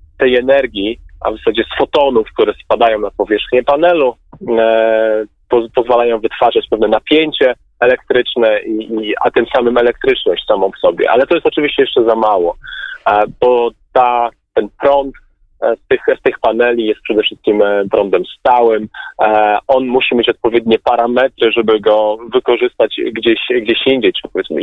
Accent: native